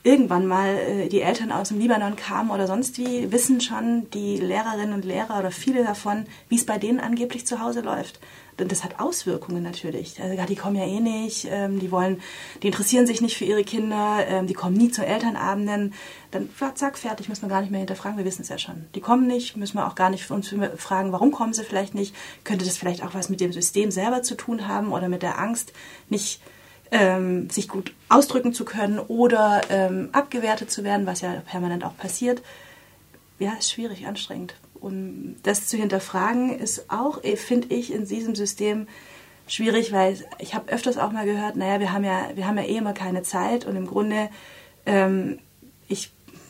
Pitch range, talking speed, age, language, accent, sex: 190-230 Hz, 195 wpm, 30-49, German, German, female